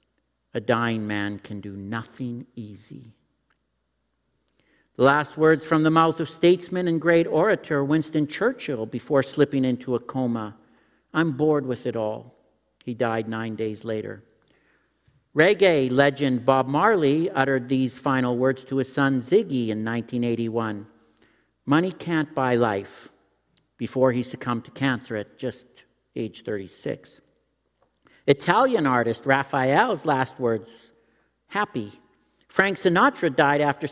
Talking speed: 125 wpm